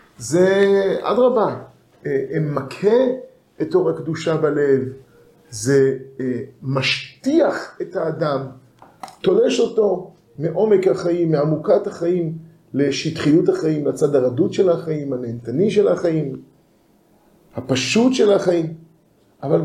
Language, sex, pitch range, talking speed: Hebrew, male, 150-200 Hz, 90 wpm